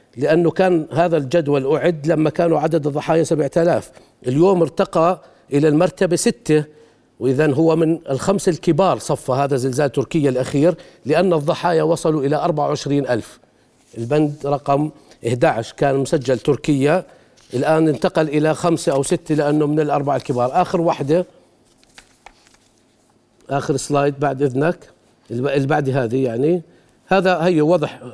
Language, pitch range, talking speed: Arabic, 145-175 Hz, 125 wpm